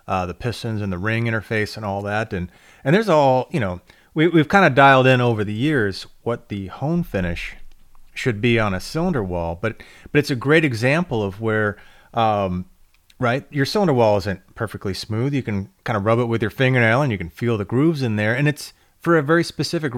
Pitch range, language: 105-140 Hz, English